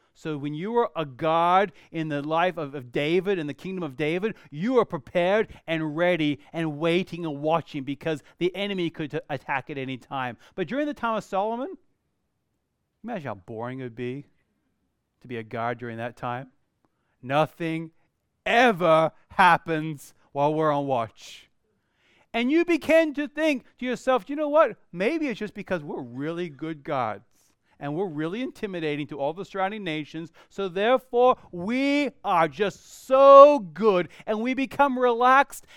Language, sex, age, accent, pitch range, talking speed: English, male, 40-59, American, 155-240 Hz, 170 wpm